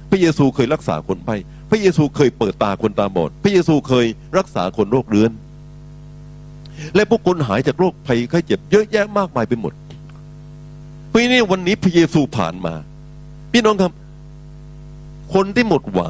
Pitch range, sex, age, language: 140-185 Hz, male, 60-79, Thai